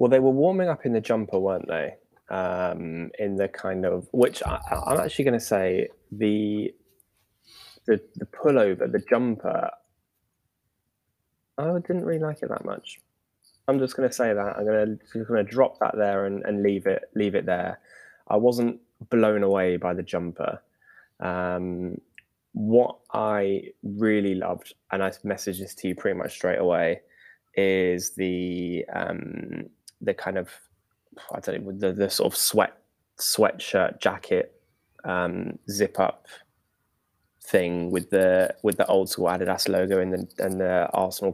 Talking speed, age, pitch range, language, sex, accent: 160 wpm, 10-29, 90-110 Hz, English, male, British